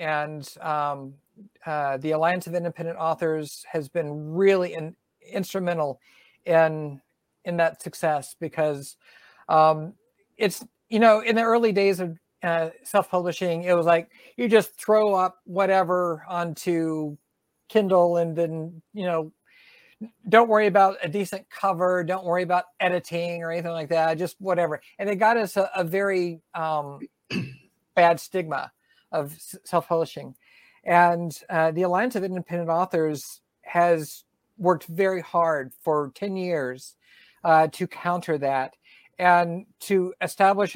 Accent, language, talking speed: American, English, 135 wpm